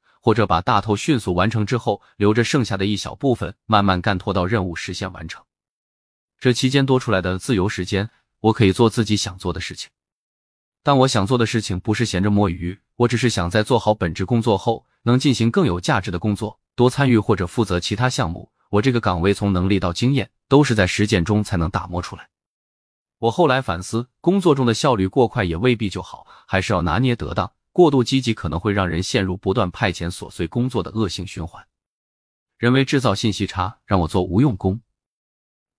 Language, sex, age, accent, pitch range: Chinese, male, 20-39, native, 90-120 Hz